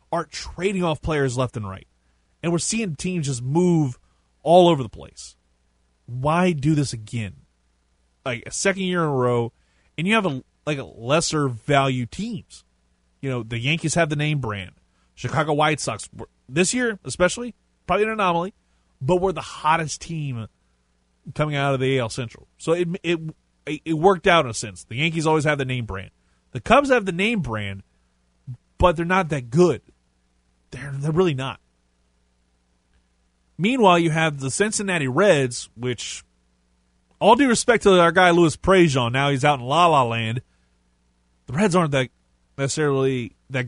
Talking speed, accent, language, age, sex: 170 wpm, American, English, 30-49, male